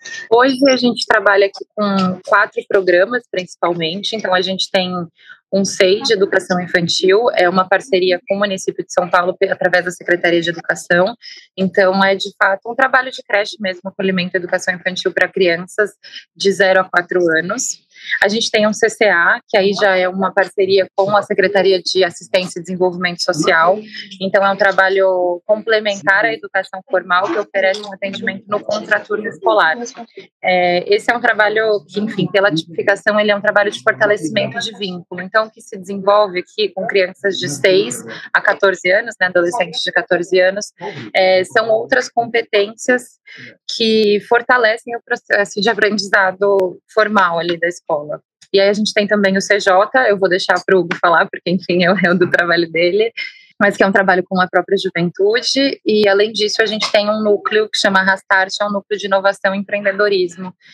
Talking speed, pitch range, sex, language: 180 wpm, 185-210 Hz, female, Portuguese